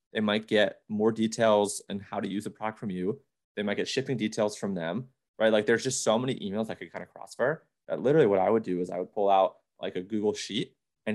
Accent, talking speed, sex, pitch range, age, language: American, 260 wpm, male, 95-115 Hz, 20-39, English